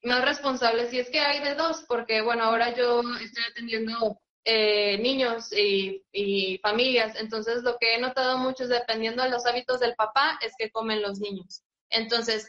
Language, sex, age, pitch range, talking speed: Spanish, female, 20-39, 215-250 Hz, 185 wpm